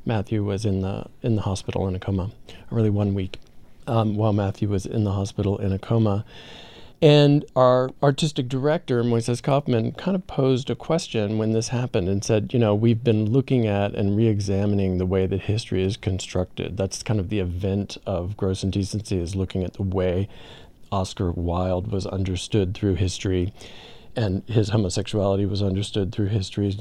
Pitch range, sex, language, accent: 100-120 Hz, male, English, American